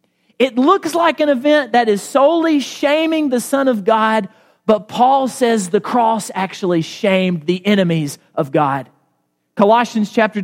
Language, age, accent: English, 40-59, American